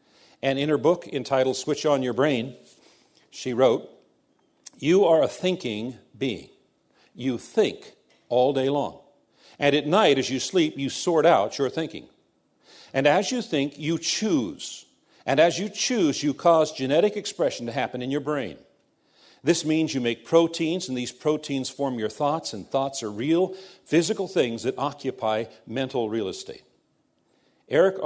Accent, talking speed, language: American, 160 wpm, English